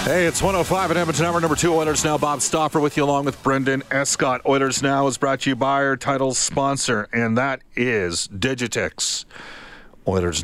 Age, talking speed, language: 40-59, 190 wpm, English